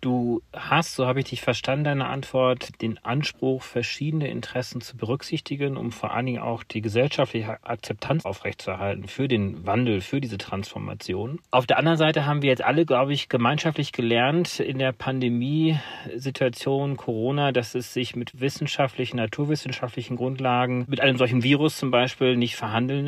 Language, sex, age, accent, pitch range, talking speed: German, male, 40-59, German, 115-145 Hz, 160 wpm